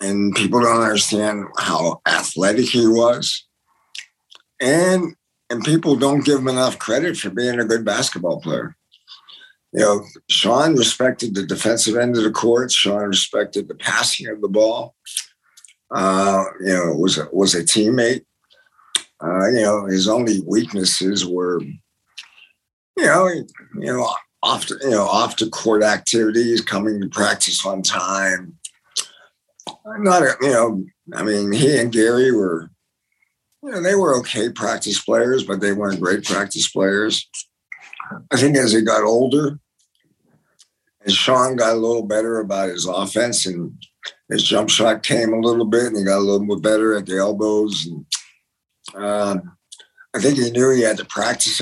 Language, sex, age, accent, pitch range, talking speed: English, male, 50-69, American, 100-125 Hz, 160 wpm